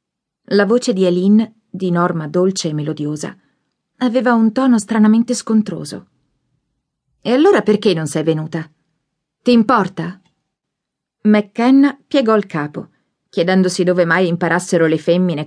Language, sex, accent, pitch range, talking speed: Italian, female, native, 175-225 Hz, 125 wpm